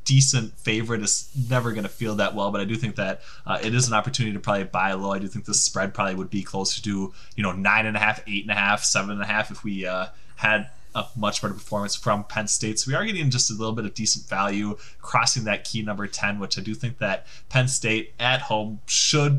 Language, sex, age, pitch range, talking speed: English, male, 20-39, 100-130 Hz, 260 wpm